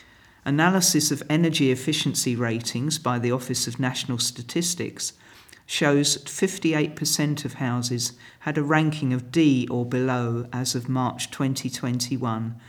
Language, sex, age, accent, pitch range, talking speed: English, male, 50-69, British, 120-145 Hz, 125 wpm